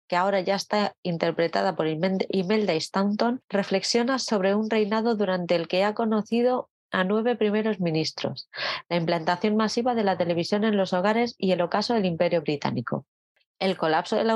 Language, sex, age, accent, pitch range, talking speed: Spanish, female, 30-49, Spanish, 180-220 Hz, 165 wpm